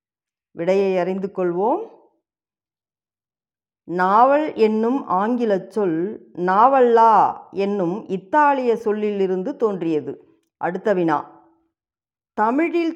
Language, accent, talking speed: Tamil, native, 65 wpm